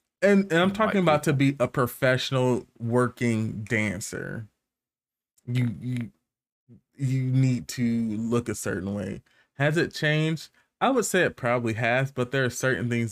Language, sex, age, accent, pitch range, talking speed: English, male, 20-39, American, 110-130 Hz, 155 wpm